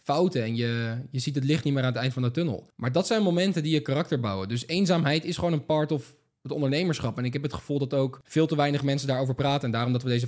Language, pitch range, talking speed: Dutch, 125-155 Hz, 290 wpm